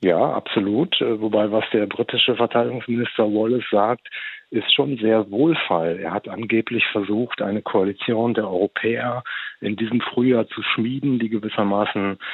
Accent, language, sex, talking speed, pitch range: German, German, male, 135 wpm, 105-120 Hz